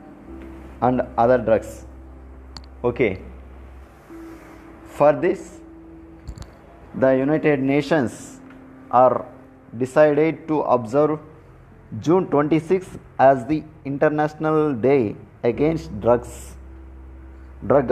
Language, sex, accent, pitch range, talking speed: Telugu, male, native, 100-145 Hz, 75 wpm